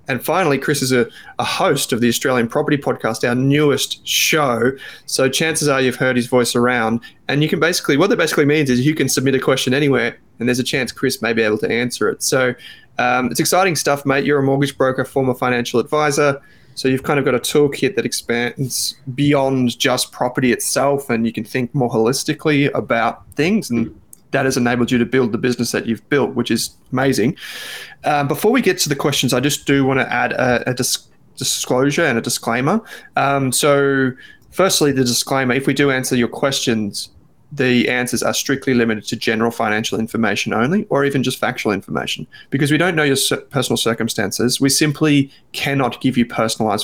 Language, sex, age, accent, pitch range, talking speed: English, male, 20-39, Australian, 120-145 Hz, 200 wpm